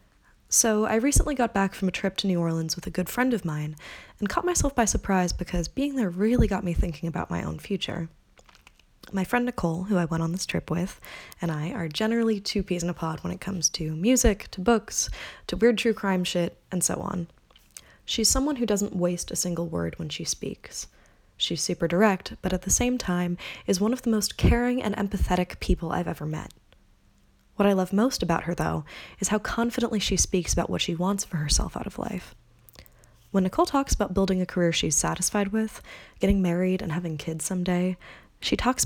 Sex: female